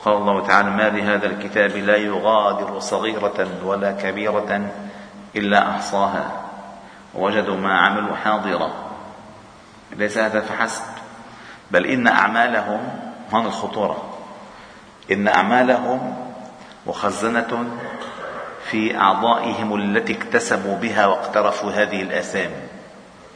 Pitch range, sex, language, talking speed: 95-105 Hz, male, Arabic, 90 wpm